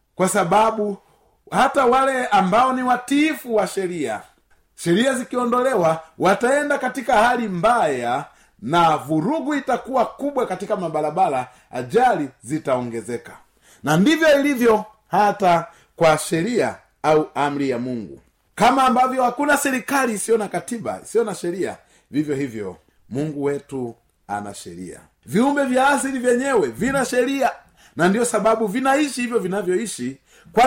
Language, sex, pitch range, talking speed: Swahili, male, 165-260 Hz, 120 wpm